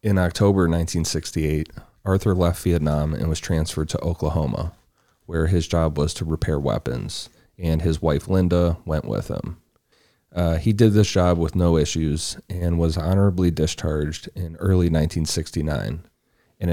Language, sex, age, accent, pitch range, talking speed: English, male, 30-49, American, 80-90 Hz, 145 wpm